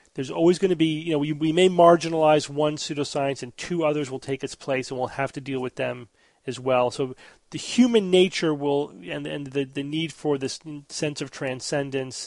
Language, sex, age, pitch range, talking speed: English, male, 30-49, 135-165 Hz, 215 wpm